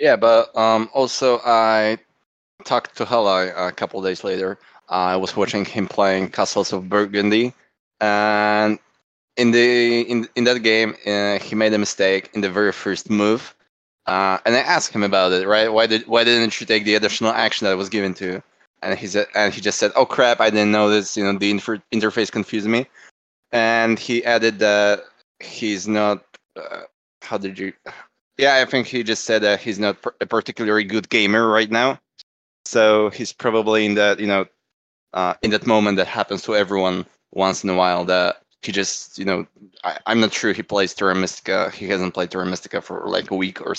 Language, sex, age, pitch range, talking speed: English, male, 20-39, 95-110 Hz, 200 wpm